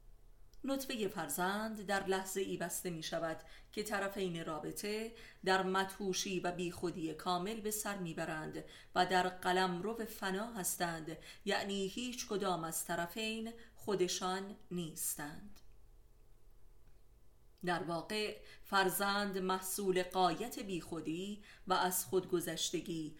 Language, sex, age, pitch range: Persian, female, 30-49, 165-200 Hz